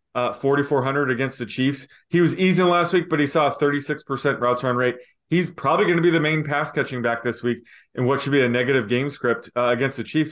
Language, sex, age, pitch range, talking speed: English, male, 20-39, 125-150 Hz, 240 wpm